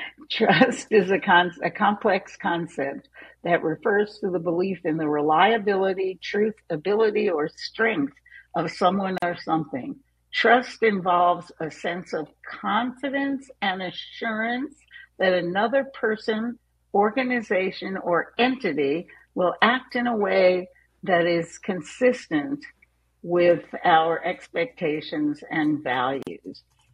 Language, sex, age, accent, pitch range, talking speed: English, female, 60-79, American, 170-250 Hz, 110 wpm